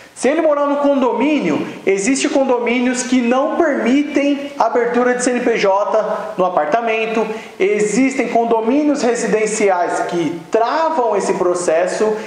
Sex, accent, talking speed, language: male, Brazilian, 110 wpm, Portuguese